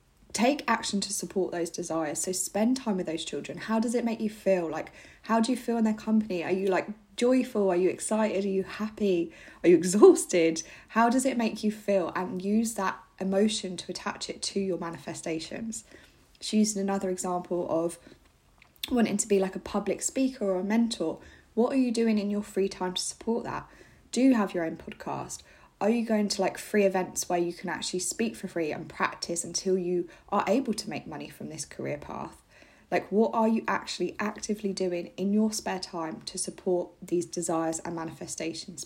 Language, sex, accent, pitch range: English, female, British, 175-215 Hz